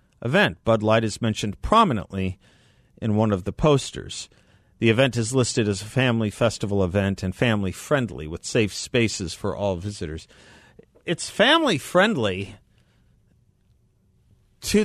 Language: English